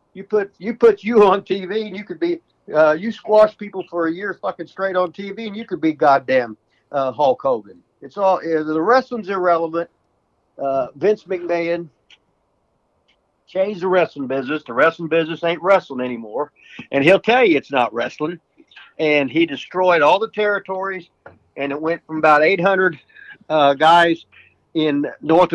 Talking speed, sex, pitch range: 165 wpm, male, 150-190 Hz